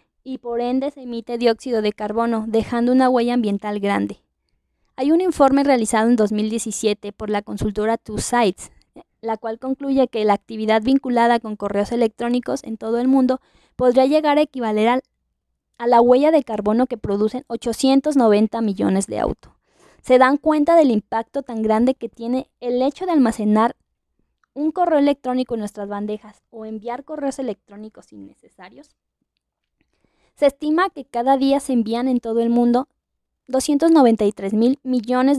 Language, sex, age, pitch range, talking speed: Spanish, female, 20-39, 220-260 Hz, 155 wpm